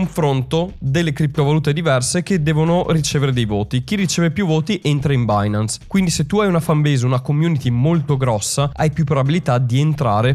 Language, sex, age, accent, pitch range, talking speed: Italian, male, 20-39, native, 120-155 Hz, 180 wpm